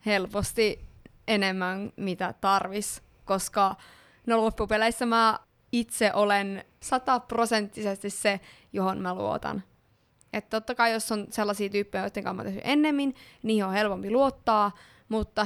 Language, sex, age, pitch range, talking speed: Finnish, female, 20-39, 200-235 Hz, 130 wpm